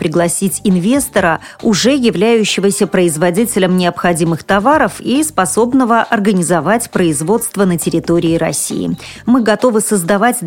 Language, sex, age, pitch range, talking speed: Russian, female, 40-59, 180-230 Hz, 100 wpm